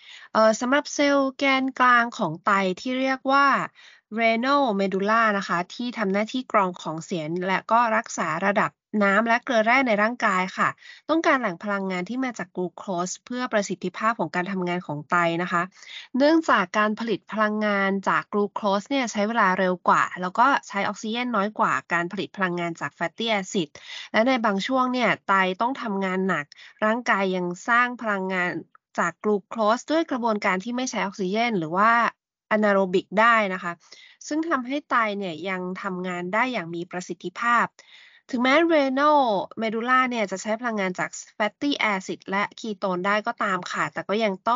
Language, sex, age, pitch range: Thai, female, 20-39, 185-245 Hz